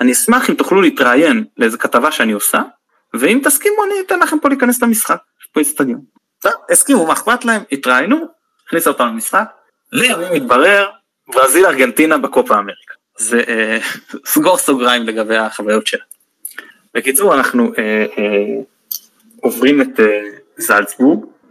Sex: male